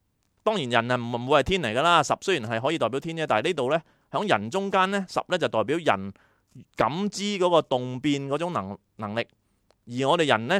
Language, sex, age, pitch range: Chinese, male, 30-49, 105-160 Hz